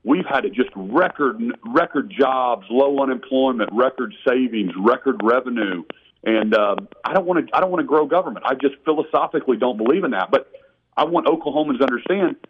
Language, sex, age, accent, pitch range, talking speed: English, male, 40-59, American, 130-175 Hz, 180 wpm